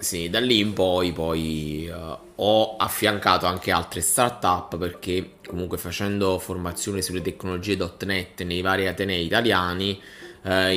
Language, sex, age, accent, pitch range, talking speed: Italian, male, 20-39, native, 85-95 Hz, 135 wpm